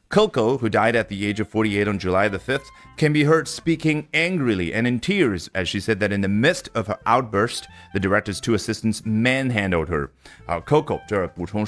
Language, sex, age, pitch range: Chinese, male, 30-49, 95-140 Hz